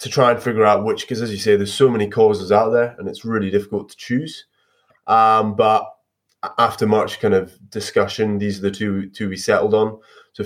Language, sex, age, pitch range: English, male, 20-39, 100-120 Hz